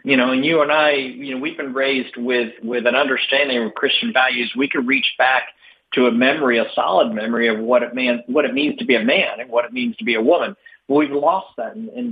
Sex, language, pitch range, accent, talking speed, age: male, English, 125-180 Hz, American, 260 wpm, 50-69